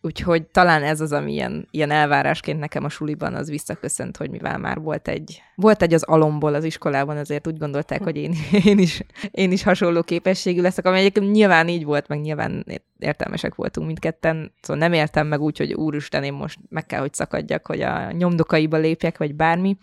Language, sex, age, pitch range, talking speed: Hungarian, female, 20-39, 150-175 Hz, 195 wpm